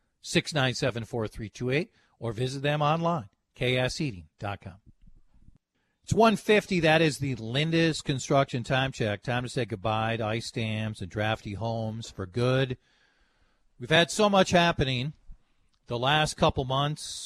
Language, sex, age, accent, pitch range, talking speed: English, male, 50-69, American, 110-150 Hz, 145 wpm